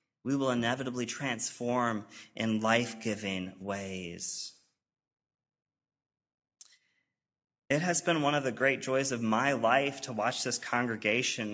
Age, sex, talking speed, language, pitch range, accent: 30-49, male, 115 wpm, English, 110-140 Hz, American